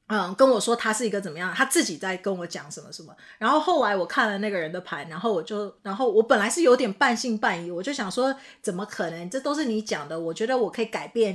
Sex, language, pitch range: female, Chinese, 195-265 Hz